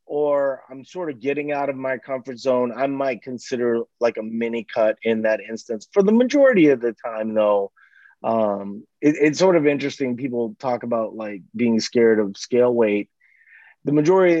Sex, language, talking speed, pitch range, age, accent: male, English, 180 wpm, 115-155 Hz, 30-49, American